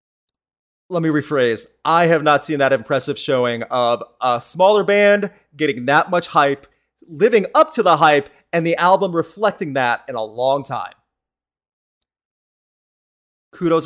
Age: 30-49